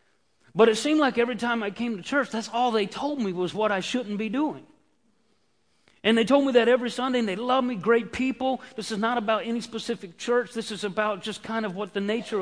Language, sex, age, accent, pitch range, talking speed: English, male, 40-59, American, 195-235 Hz, 240 wpm